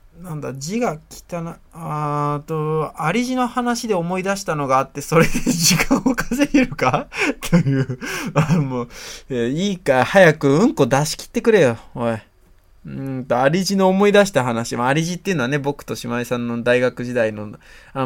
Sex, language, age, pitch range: male, Japanese, 20-39, 120-175 Hz